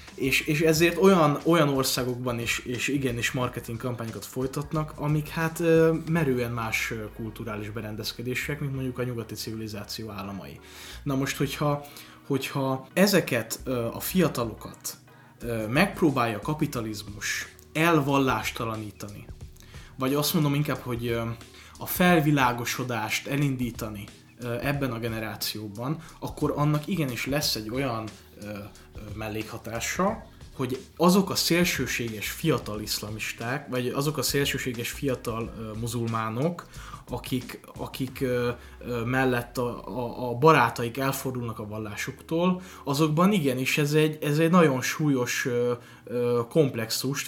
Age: 20-39